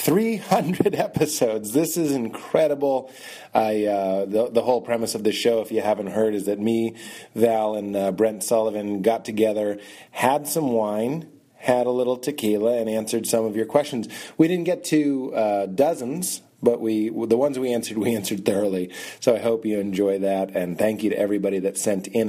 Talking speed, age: 190 wpm, 30-49